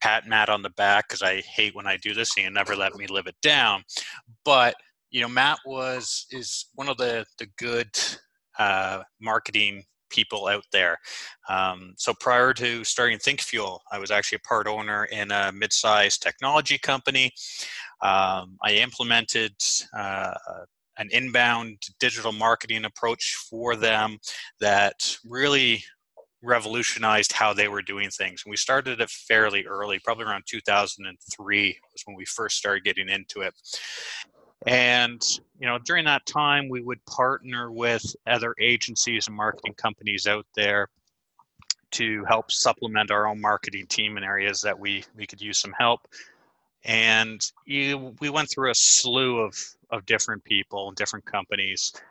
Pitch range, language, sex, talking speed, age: 100-120 Hz, English, male, 155 wpm, 20-39